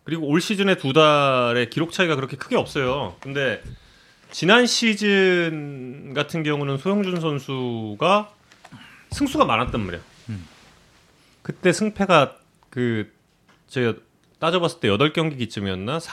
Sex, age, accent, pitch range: male, 30-49, native, 120-195 Hz